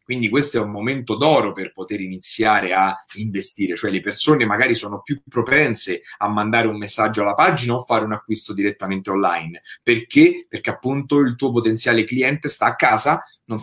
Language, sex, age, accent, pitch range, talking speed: Italian, male, 30-49, native, 110-145 Hz, 180 wpm